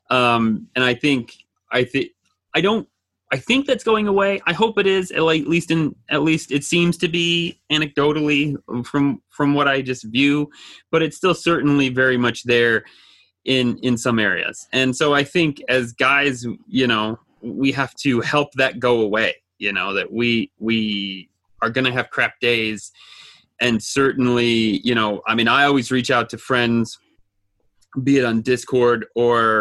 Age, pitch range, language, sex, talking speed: 30-49, 115-150 Hz, English, male, 175 wpm